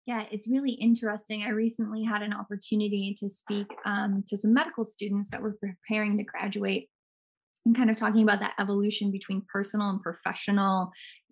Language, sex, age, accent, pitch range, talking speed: English, female, 20-39, American, 195-230 Hz, 170 wpm